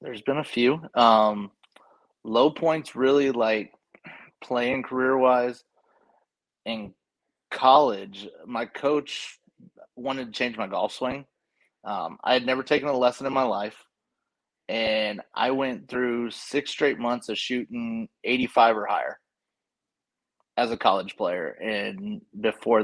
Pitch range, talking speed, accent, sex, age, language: 110-130 Hz, 130 wpm, American, male, 30-49, English